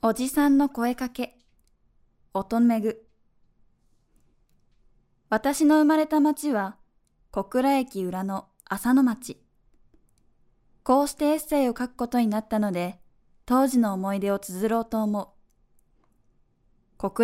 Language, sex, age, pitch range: Japanese, female, 20-39, 200-255 Hz